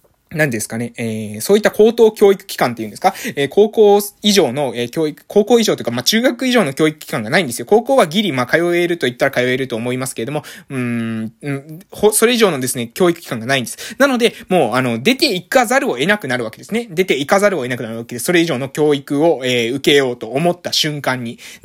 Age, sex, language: 20-39, male, Japanese